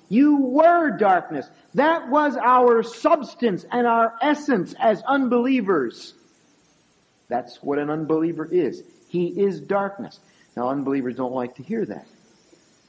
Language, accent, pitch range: English, American, 150-225 Hz